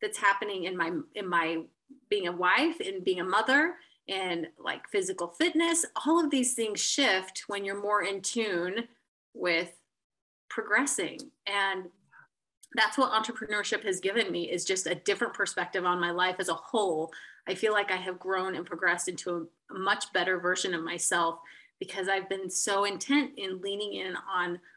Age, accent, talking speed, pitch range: 30-49, American, 170 wpm, 180-225 Hz